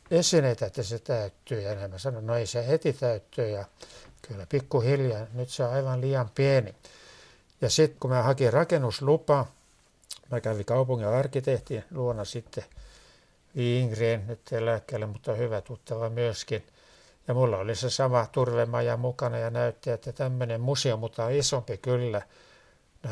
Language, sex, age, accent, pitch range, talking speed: Finnish, male, 60-79, native, 115-135 Hz, 150 wpm